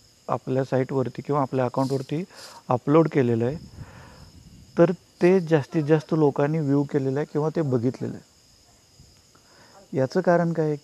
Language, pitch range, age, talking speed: Marathi, 130-165 Hz, 40-59, 135 wpm